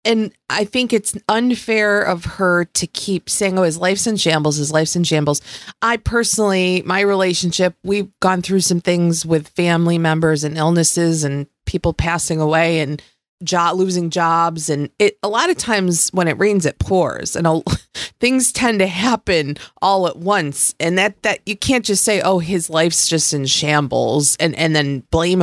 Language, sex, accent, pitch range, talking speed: English, female, American, 155-200 Hz, 185 wpm